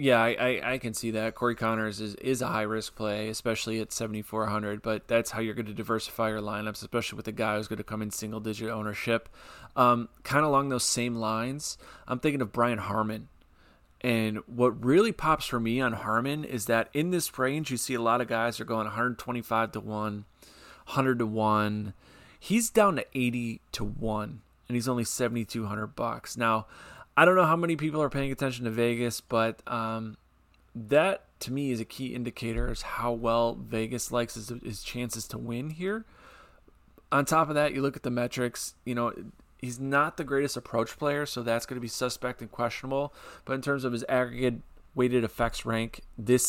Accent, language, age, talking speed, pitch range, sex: American, English, 30-49, 200 wpm, 110-125 Hz, male